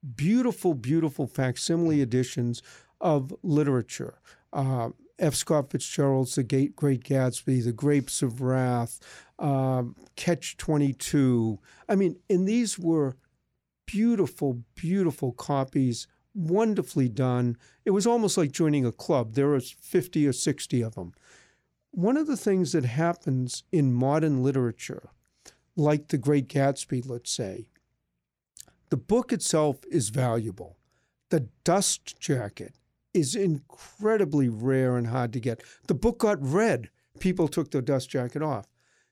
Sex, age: male, 50-69